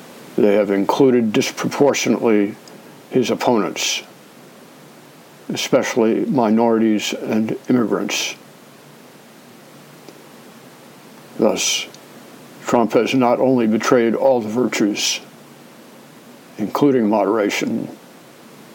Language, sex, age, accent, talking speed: English, male, 60-79, American, 65 wpm